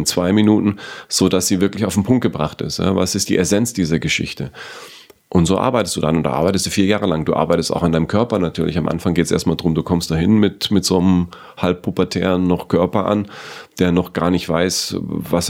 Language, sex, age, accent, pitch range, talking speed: German, male, 30-49, German, 80-95 Hz, 220 wpm